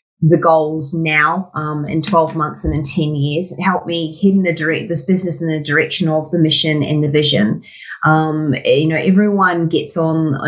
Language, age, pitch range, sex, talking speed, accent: English, 30-49, 150-175 Hz, female, 200 wpm, Australian